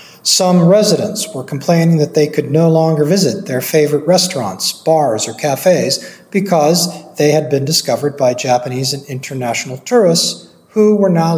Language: English